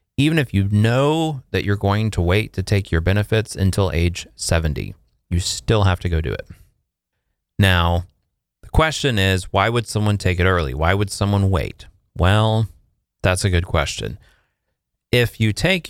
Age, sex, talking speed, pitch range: 30-49, male, 170 wpm, 90-105 Hz